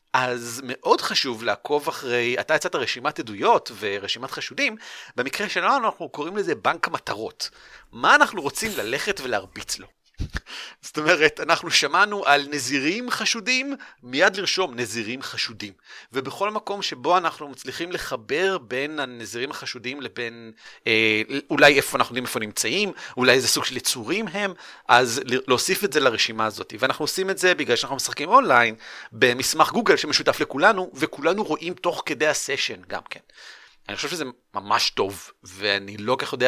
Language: Hebrew